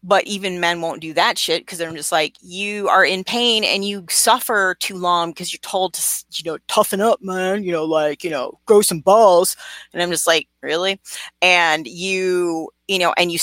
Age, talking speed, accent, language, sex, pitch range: 30-49, 215 wpm, American, English, female, 170-215 Hz